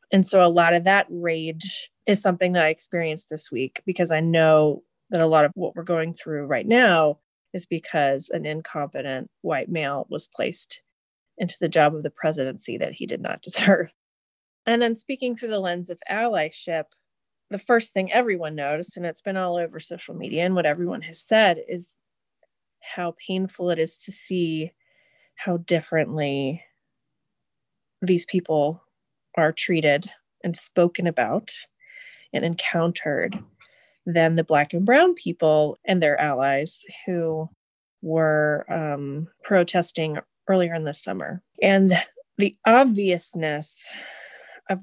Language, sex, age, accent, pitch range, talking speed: English, female, 30-49, American, 160-190 Hz, 145 wpm